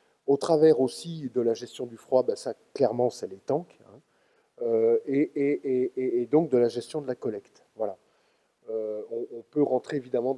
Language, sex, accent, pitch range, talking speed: French, male, French, 125-170 Hz, 180 wpm